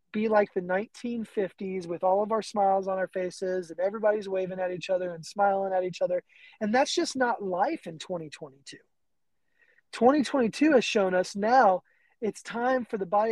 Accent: American